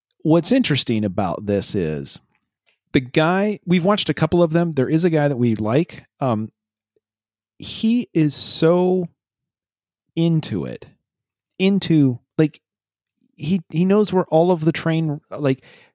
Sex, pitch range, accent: male, 120-165 Hz, American